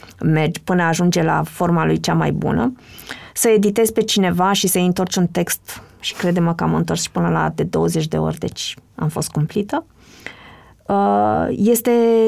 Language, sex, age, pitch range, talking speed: Romanian, female, 20-39, 165-210 Hz, 170 wpm